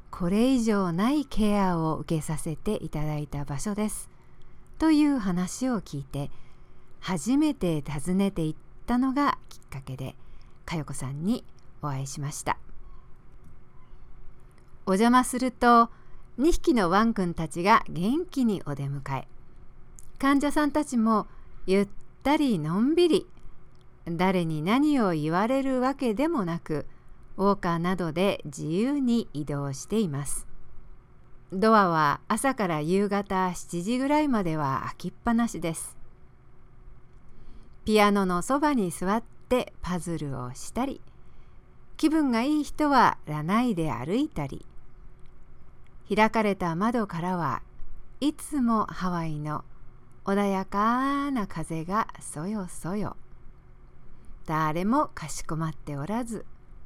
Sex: female